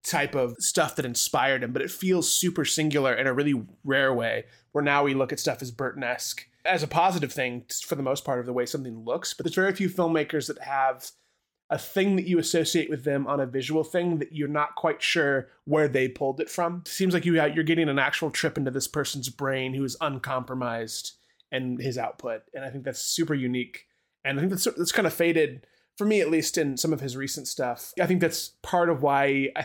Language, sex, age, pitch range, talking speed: English, male, 20-39, 125-155 Hz, 235 wpm